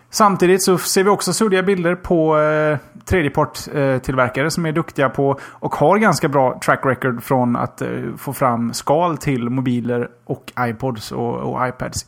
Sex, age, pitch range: male, 30-49, 125-160 Hz